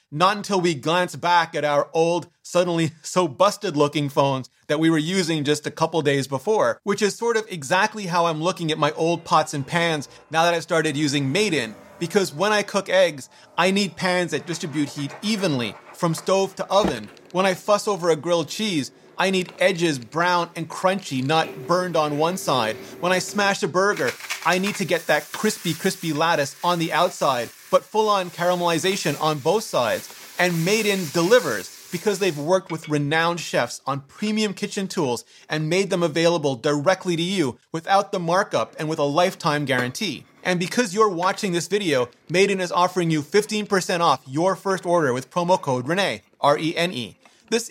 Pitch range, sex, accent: 150-190 Hz, male, American